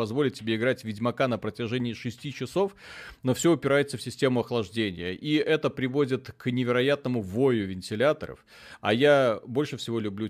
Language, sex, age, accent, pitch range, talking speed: Russian, male, 30-49, native, 110-150 Hz, 150 wpm